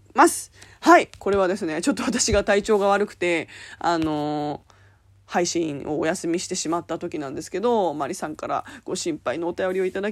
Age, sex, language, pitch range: 20-39, female, Japanese, 155-220 Hz